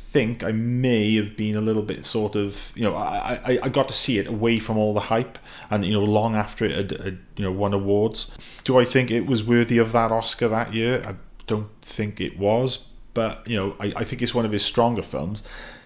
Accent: British